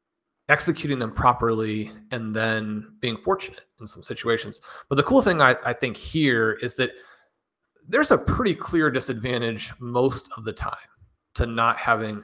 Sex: male